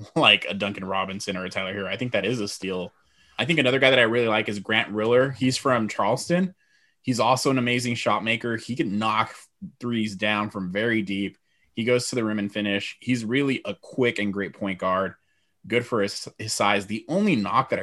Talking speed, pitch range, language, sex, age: 220 wpm, 100-130 Hz, English, male, 20-39